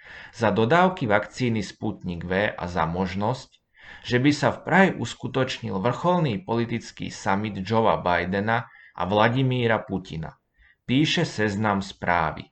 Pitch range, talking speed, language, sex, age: 95-130 Hz, 120 wpm, Slovak, male, 30-49